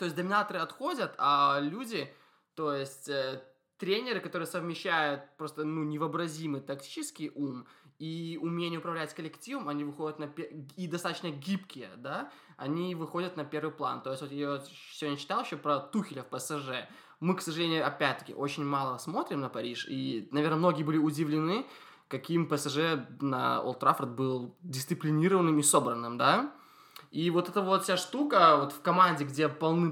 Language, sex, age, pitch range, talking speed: Russian, male, 20-39, 140-165 Hz, 160 wpm